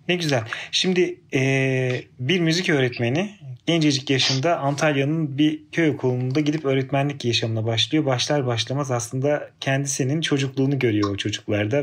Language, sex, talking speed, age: Turkish, male, 125 wpm, 30-49